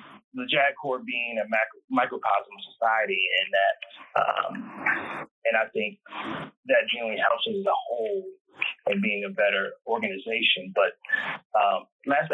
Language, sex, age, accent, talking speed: English, male, 30-49, American, 140 wpm